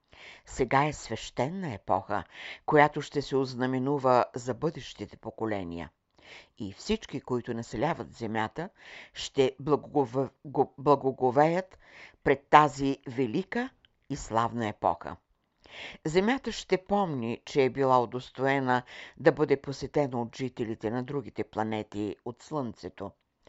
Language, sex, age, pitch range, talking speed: Bulgarian, female, 60-79, 115-150 Hz, 105 wpm